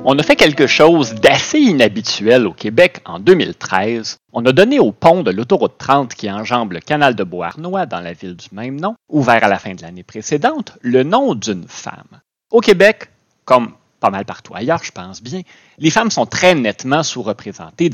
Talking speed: 195 wpm